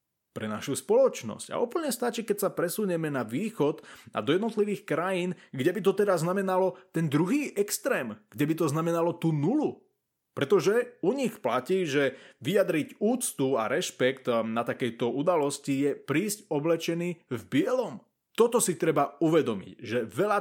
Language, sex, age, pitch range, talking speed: Slovak, male, 20-39, 135-185 Hz, 155 wpm